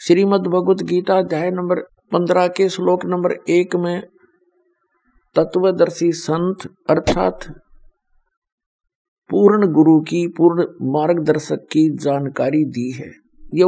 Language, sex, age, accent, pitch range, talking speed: Hindi, male, 50-69, native, 160-205 Hz, 100 wpm